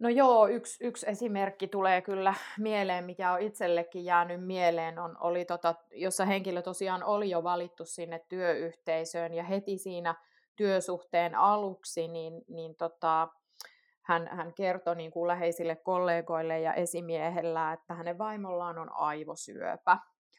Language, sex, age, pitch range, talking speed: Finnish, female, 30-49, 170-195 Hz, 135 wpm